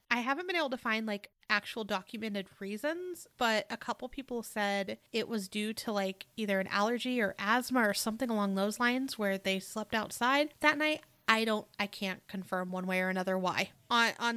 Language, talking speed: English, 200 wpm